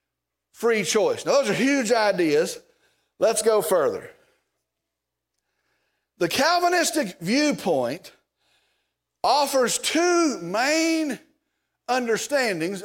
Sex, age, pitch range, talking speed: male, 50-69, 215-300 Hz, 80 wpm